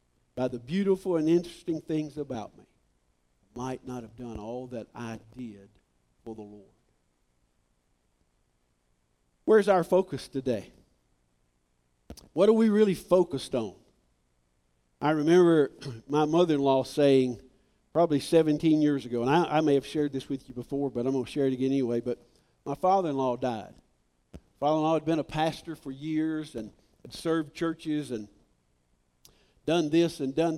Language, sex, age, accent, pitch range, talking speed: English, male, 50-69, American, 110-160 Hz, 150 wpm